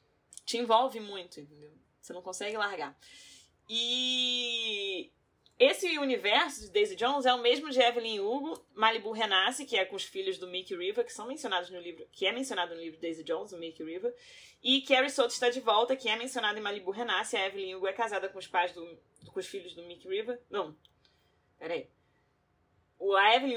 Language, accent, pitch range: Portuguese, Brazilian, 190-285 Hz